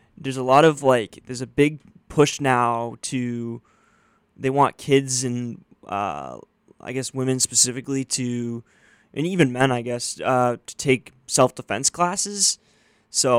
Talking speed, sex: 145 wpm, male